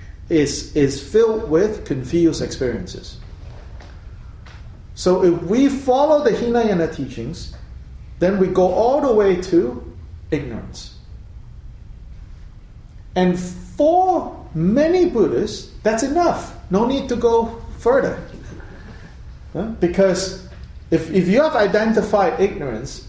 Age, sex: 40-59, male